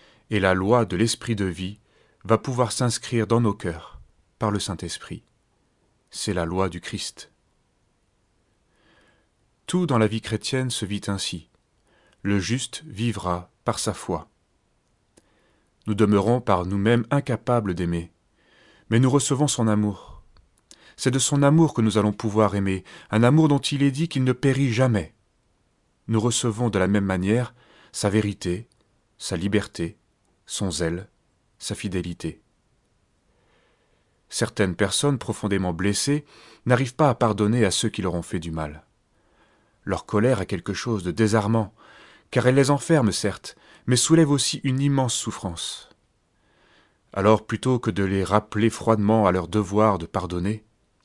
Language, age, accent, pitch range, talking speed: French, 30-49, French, 95-120 Hz, 145 wpm